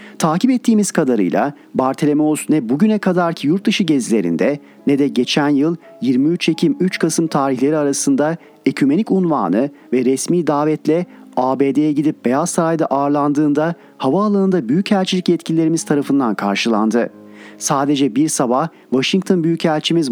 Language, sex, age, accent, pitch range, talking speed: Turkish, male, 40-59, native, 140-190 Hz, 115 wpm